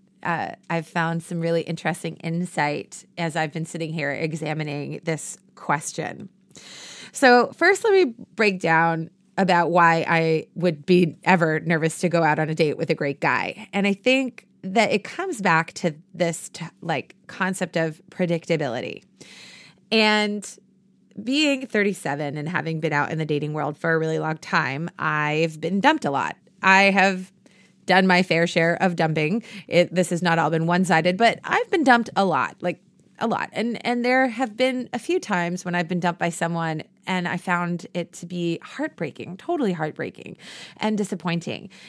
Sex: female